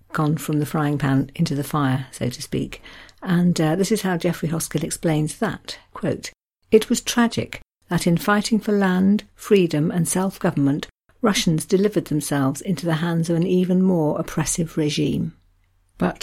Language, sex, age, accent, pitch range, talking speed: English, female, 60-79, British, 150-180 Hz, 165 wpm